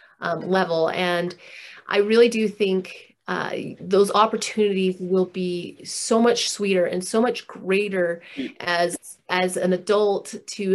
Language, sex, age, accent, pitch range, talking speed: English, female, 30-49, American, 180-215 Hz, 135 wpm